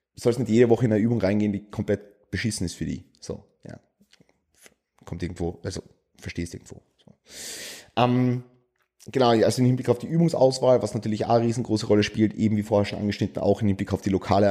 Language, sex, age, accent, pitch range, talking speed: German, male, 30-49, German, 105-125 Hz, 195 wpm